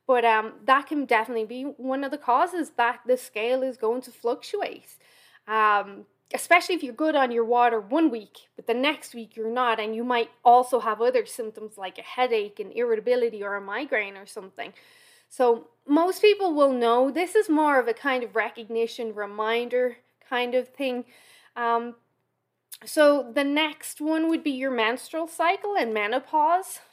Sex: female